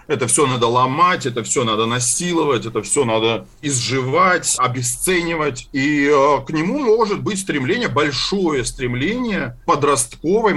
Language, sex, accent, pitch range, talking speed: Russian, male, native, 120-155 Hz, 130 wpm